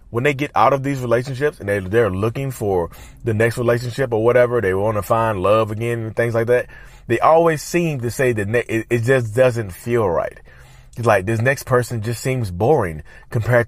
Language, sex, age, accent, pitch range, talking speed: English, male, 30-49, American, 110-135 Hz, 205 wpm